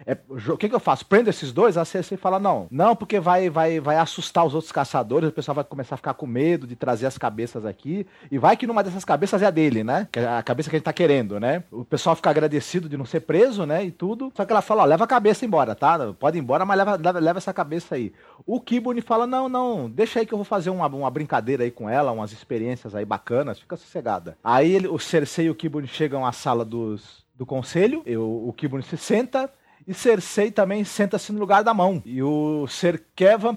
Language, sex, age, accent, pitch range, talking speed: Portuguese, male, 40-59, Brazilian, 130-200 Hz, 245 wpm